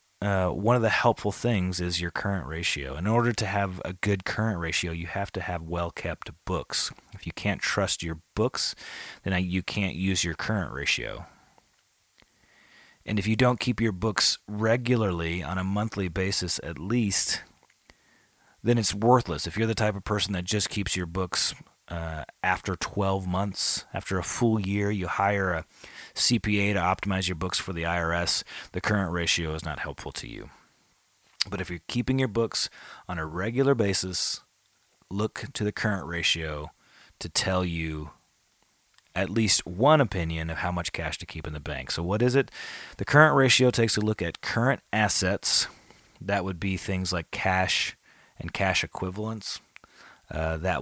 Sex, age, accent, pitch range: male, 30-49, American, 85-105 Hz